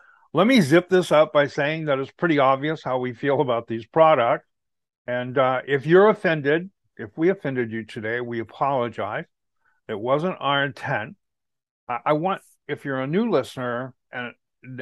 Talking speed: 165 wpm